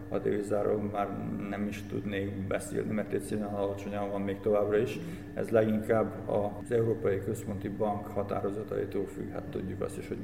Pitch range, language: 100-110 Hz, Hungarian